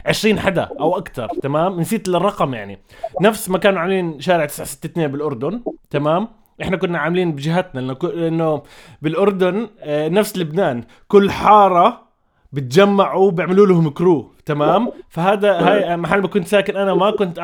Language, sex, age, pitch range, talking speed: Arabic, male, 20-39, 155-200 Hz, 140 wpm